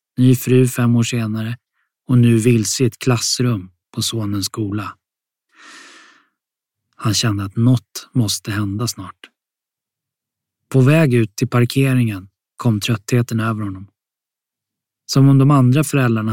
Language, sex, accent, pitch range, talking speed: Swedish, male, native, 110-130 Hz, 130 wpm